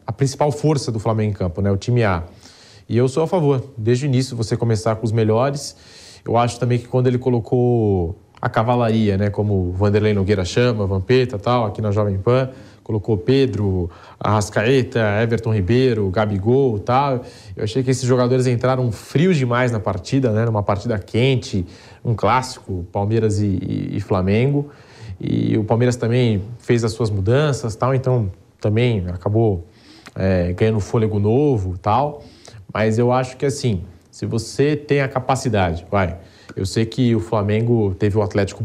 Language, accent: English, Brazilian